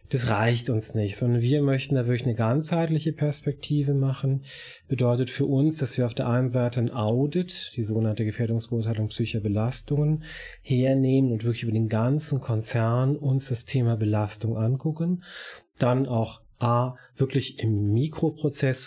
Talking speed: 145 wpm